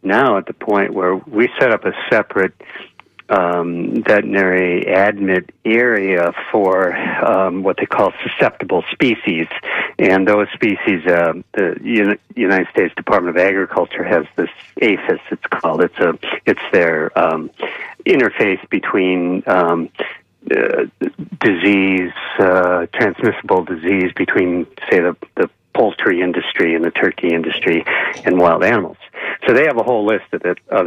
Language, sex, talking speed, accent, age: English, male, 140 wpm, American, 60-79